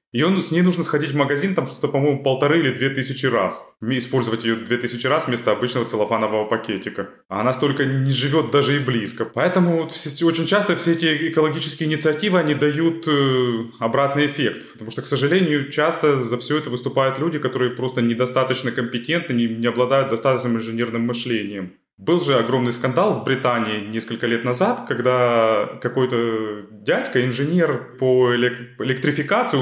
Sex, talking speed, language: male, 165 wpm, Ukrainian